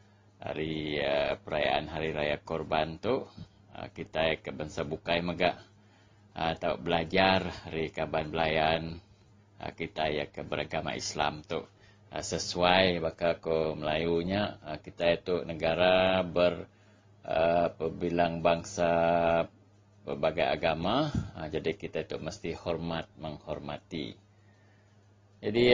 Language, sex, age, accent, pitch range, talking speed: English, male, 30-49, Indonesian, 85-100 Hz, 110 wpm